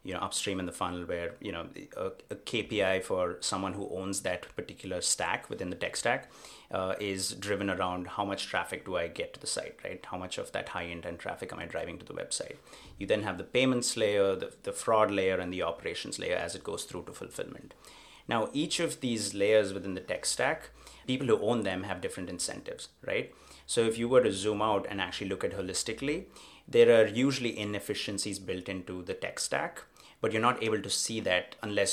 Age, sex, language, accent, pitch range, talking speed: 30-49, male, English, Indian, 95-120 Hz, 215 wpm